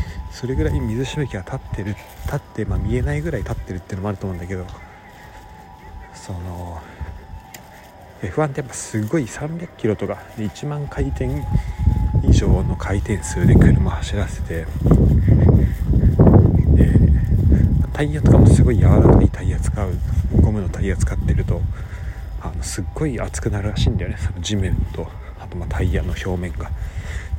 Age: 40-59